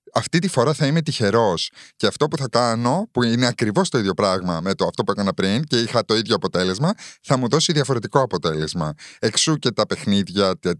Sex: male